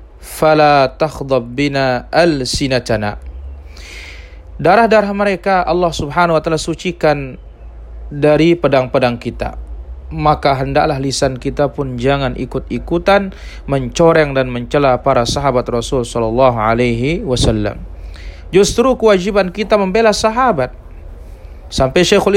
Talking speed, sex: 100 wpm, male